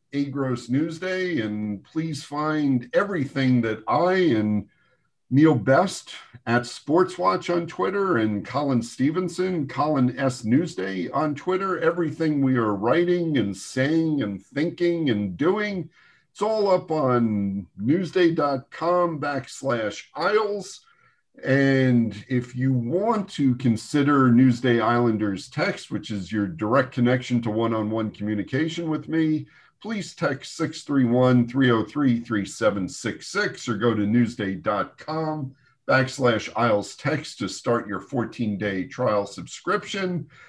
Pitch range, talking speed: 120-175 Hz, 115 wpm